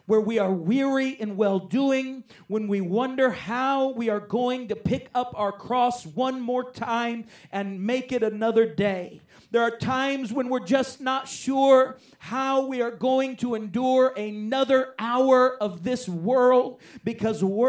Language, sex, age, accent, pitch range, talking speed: English, male, 40-59, American, 215-255 Hz, 155 wpm